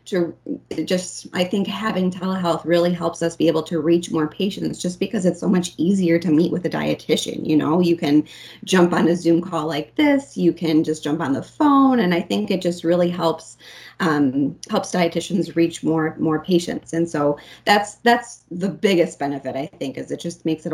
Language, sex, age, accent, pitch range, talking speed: English, female, 20-39, American, 160-190 Hz, 210 wpm